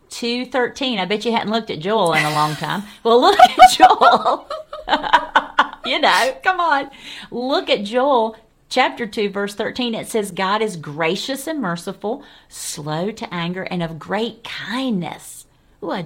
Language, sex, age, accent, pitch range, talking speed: English, female, 40-59, American, 170-230 Hz, 160 wpm